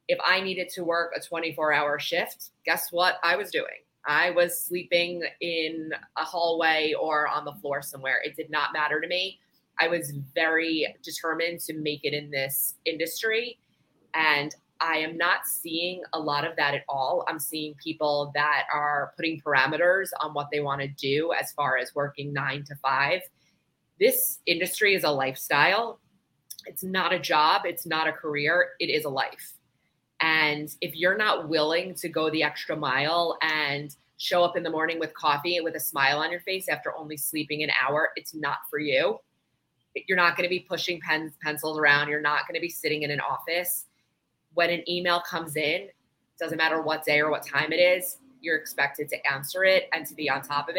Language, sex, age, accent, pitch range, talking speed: English, female, 20-39, American, 150-175 Hz, 195 wpm